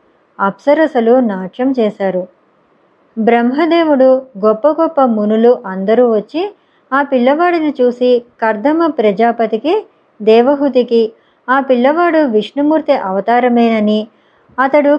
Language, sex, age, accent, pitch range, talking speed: Telugu, male, 20-39, native, 215-275 Hz, 80 wpm